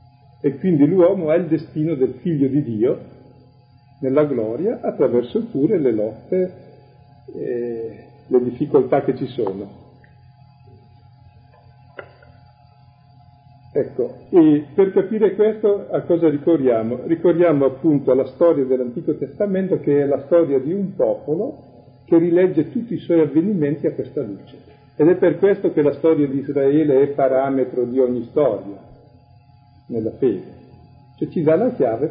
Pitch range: 120-155 Hz